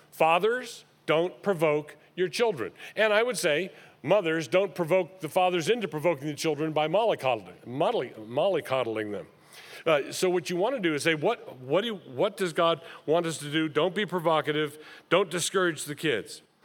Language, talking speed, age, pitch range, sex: English, 160 wpm, 50-69, 145-190 Hz, male